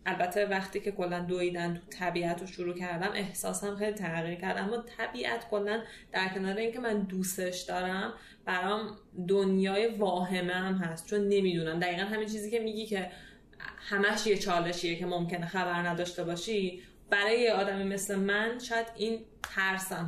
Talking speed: 150 wpm